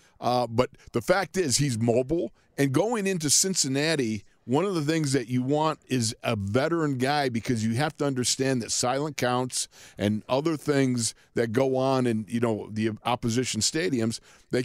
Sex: male